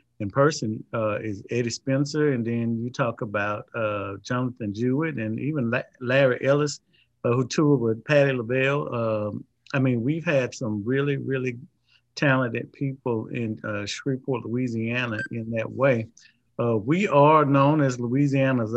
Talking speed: 155 wpm